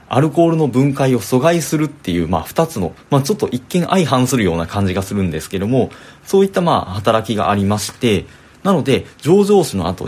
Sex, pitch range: male, 95-155 Hz